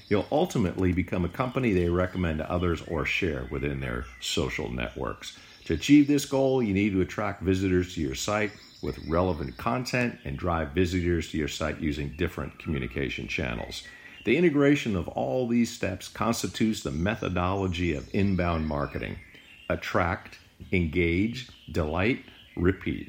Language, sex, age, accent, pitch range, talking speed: English, male, 50-69, American, 80-115 Hz, 145 wpm